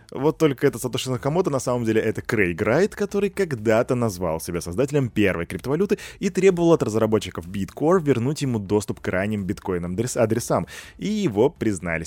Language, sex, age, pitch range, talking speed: Russian, male, 20-39, 100-130 Hz, 165 wpm